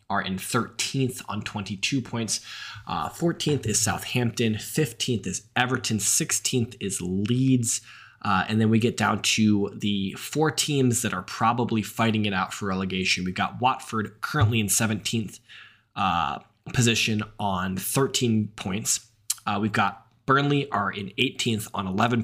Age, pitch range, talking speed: 20-39, 100-120 Hz, 145 wpm